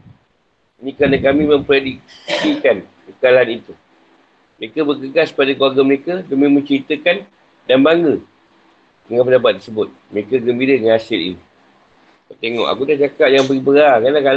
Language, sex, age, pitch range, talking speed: Malay, male, 50-69, 130-145 Hz, 130 wpm